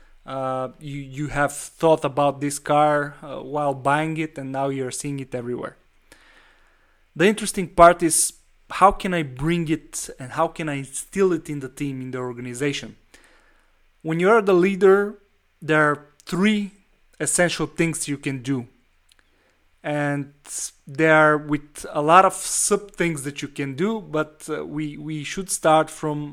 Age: 20-39